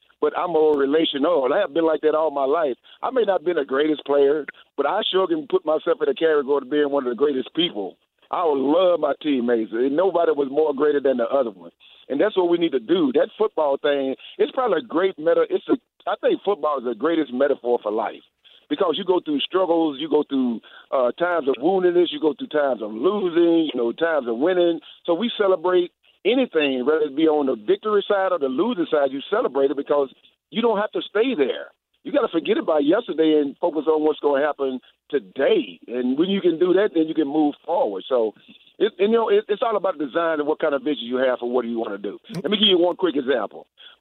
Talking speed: 240 wpm